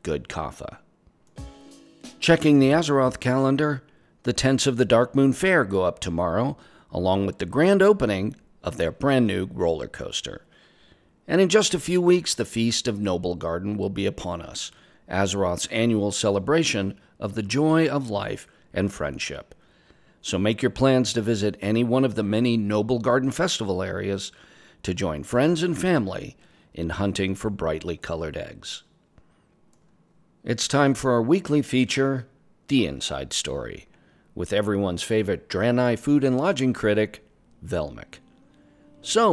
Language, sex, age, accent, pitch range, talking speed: English, male, 50-69, American, 100-145 Hz, 150 wpm